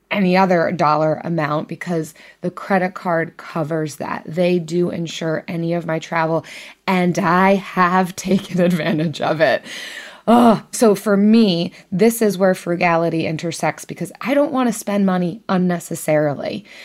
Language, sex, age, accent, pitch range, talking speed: English, female, 20-39, American, 160-200 Hz, 140 wpm